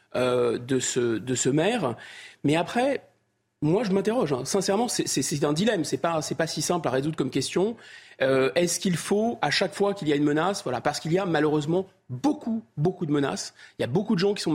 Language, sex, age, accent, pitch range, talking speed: French, male, 40-59, French, 135-185 Hz, 245 wpm